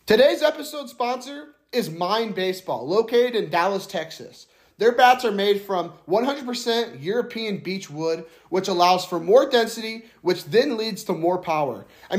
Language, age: English, 30-49